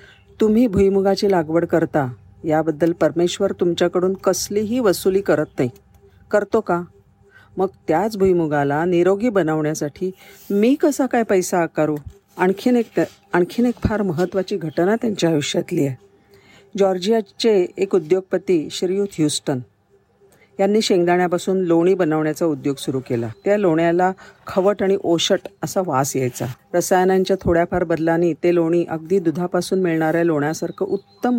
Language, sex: Marathi, female